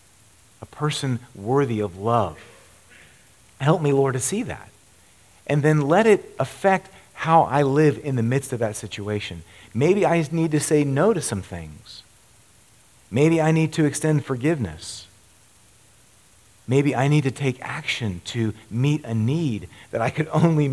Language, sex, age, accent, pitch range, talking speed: English, male, 40-59, American, 105-145 Hz, 155 wpm